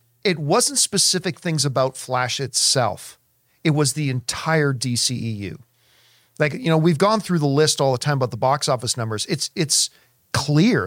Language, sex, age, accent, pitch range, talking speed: English, male, 40-59, American, 125-185 Hz, 170 wpm